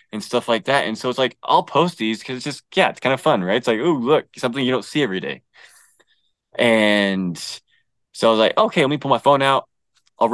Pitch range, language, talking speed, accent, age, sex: 110-140 Hz, English, 250 wpm, American, 20-39, male